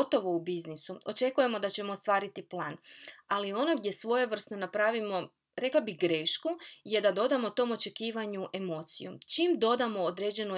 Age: 20-39